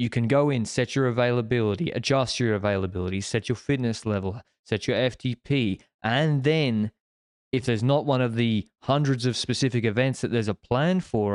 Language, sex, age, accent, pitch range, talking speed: English, male, 20-39, Australian, 110-130 Hz, 180 wpm